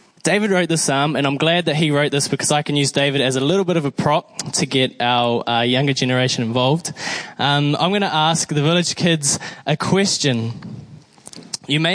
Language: English